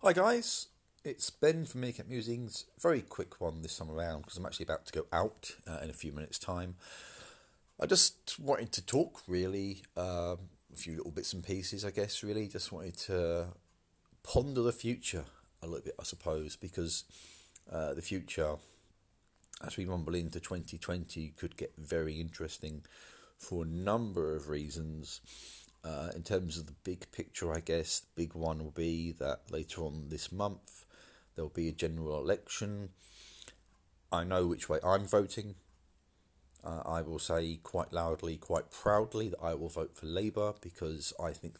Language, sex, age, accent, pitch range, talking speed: English, male, 40-59, British, 80-95 Hz, 170 wpm